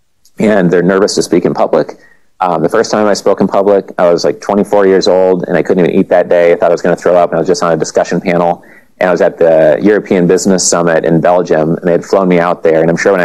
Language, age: English, 30-49